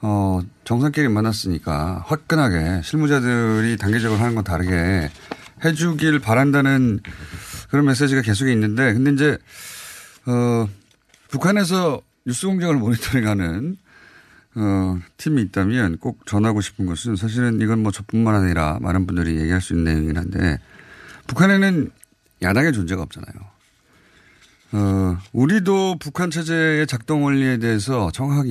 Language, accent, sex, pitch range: Korean, native, male, 100-150 Hz